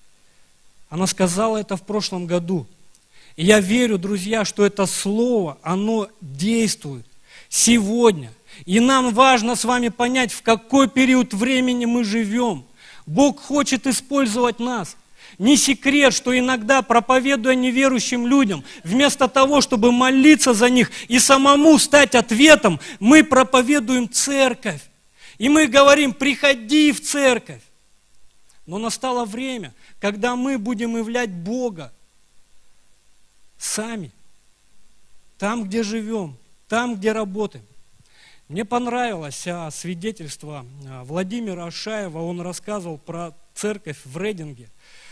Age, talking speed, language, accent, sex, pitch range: 40-59, 110 wpm, Russian, native, male, 185-250 Hz